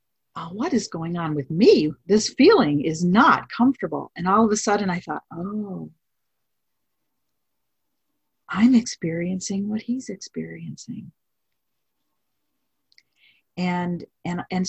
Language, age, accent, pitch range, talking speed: English, 50-69, American, 165-210 Hz, 110 wpm